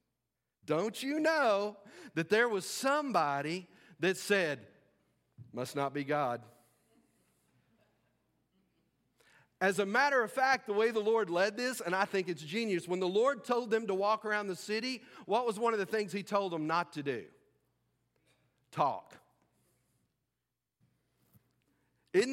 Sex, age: male, 40-59